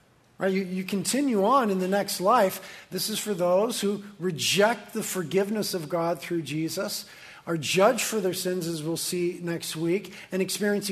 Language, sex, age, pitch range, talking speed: English, male, 50-69, 170-205 Hz, 175 wpm